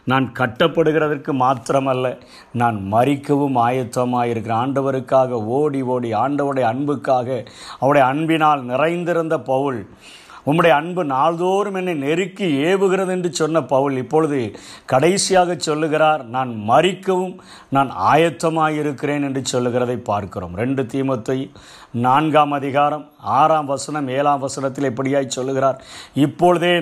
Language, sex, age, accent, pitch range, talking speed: Tamil, male, 50-69, native, 130-165 Hz, 105 wpm